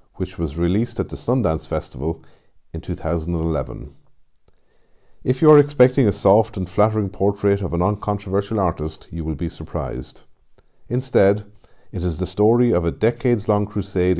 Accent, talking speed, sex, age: Irish, 150 wpm, male, 50-69